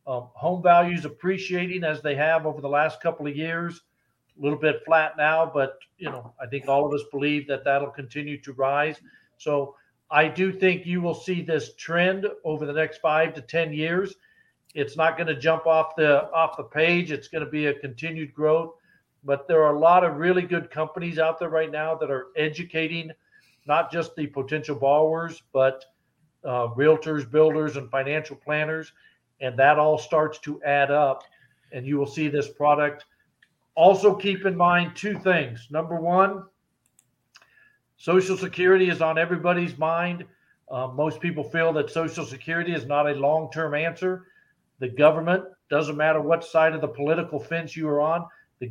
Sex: male